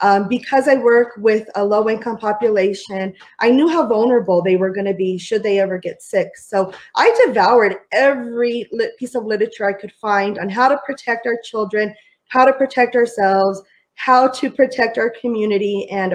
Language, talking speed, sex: English, 180 wpm, female